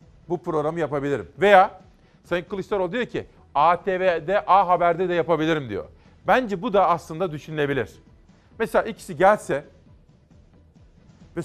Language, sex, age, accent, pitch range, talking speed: Turkish, male, 40-59, native, 150-185 Hz, 120 wpm